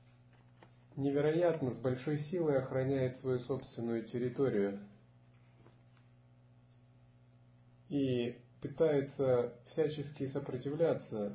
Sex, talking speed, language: male, 65 wpm, Russian